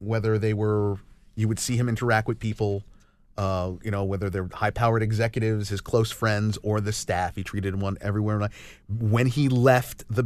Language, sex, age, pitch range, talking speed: English, male, 30-49, 100-125 Hz, 180 wpm